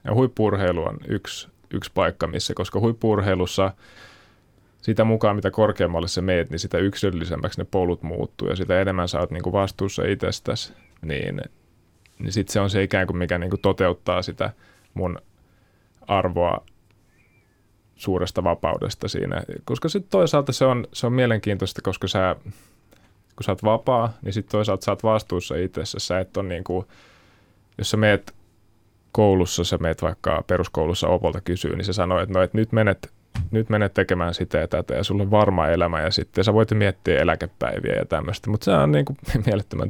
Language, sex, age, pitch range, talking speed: Finnish, male, 20-39, 90-105 Hz, 165 wpm